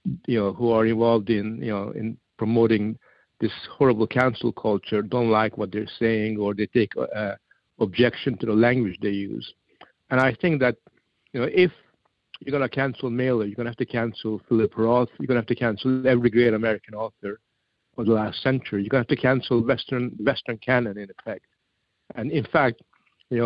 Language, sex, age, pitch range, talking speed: English, male, 60-79, 110-130 Hz, 200 wpm